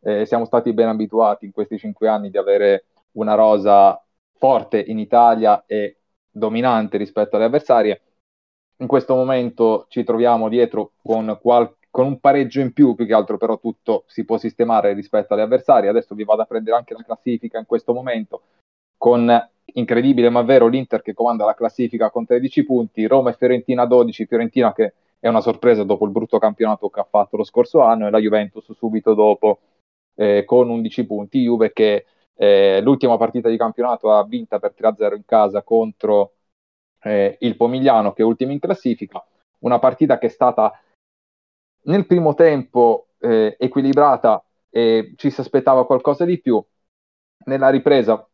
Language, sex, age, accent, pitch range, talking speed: Italian, male, 30-49, native, 110-130 Hz, 170 wpm